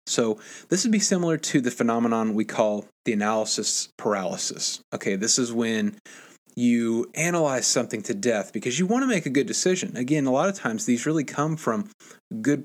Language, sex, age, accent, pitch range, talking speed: English, male, 30-49, American, 115-180 Hz, 190 wpm